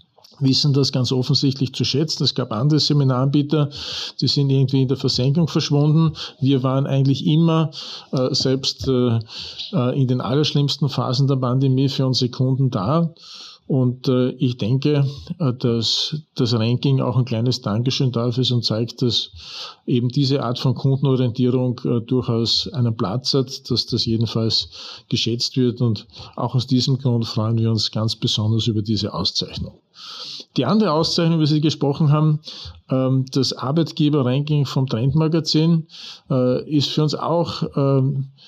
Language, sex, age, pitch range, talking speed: German, male, 40-59, 125-145 Hz, 145 wpm